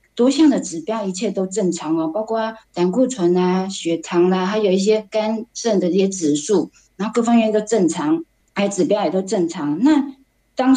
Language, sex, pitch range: Chinese, female, 180-230 Hz